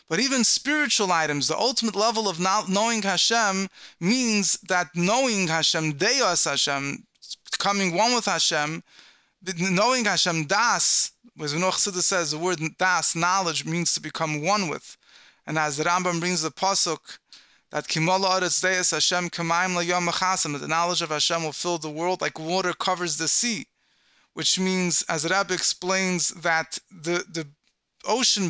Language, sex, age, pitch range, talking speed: English, male, 20-39, 170-210 Hz, 140 wpm